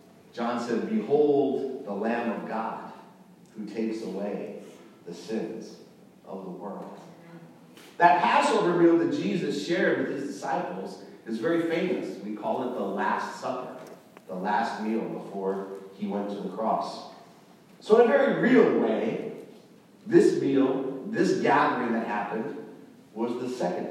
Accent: American